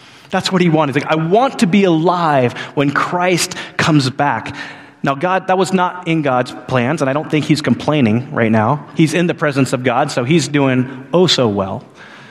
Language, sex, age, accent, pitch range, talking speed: English, male, 30-49, American, 115-155 Hz, 205 wpm